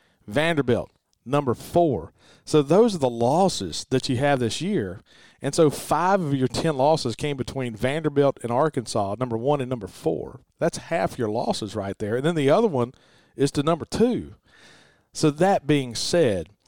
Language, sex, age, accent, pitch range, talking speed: English, male, 40-59, American, 120-155 Hz, 175 wpm